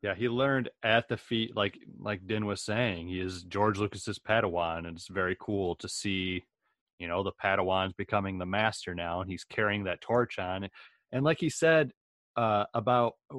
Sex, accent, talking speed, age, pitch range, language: male, American, 190 wpm, 30-49, 100-130 Hz, English